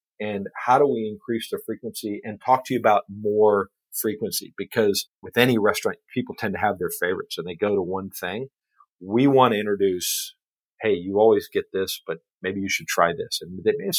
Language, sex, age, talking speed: English, male, 50-69, 200 wpm